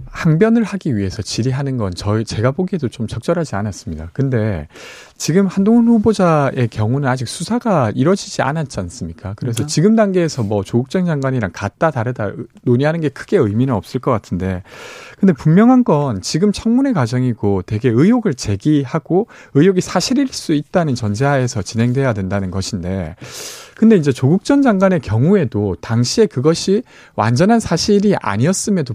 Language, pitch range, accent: Korean, 115-195 Hz, native